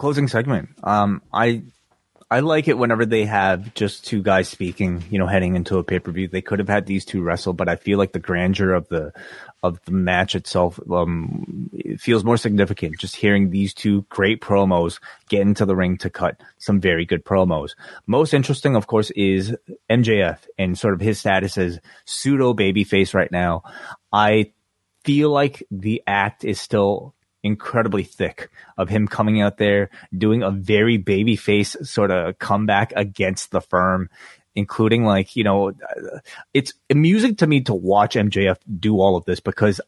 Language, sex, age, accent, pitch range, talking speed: English, male, 20-39, American, 95-110 Hz, 175 wpm